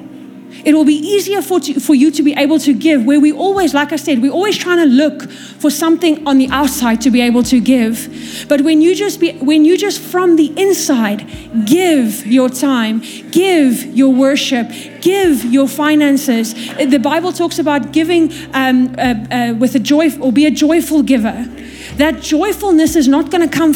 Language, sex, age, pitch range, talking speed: English, female, 30-49, 255-310 Hz, 190 wpm